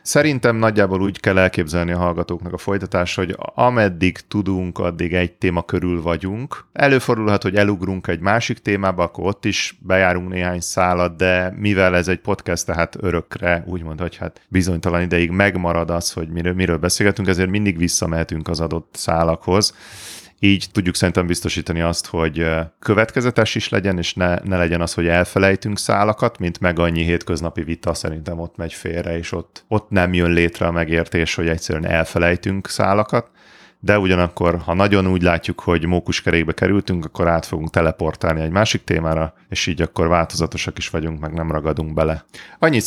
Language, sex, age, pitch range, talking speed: Hungarian, male, 30-49, 85-100 Hz, 165 wpm